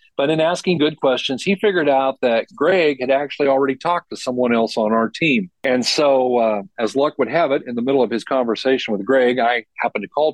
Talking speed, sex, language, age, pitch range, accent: 230 wpm, male, English, 40-59, 115-135 Hz, American